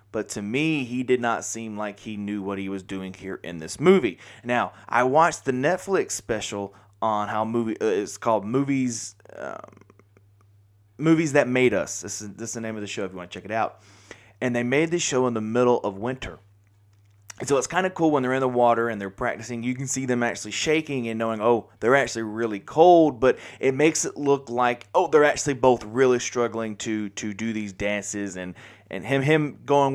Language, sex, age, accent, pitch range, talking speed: English, male, 20-39, American, 105-135 Hz, 220 wpm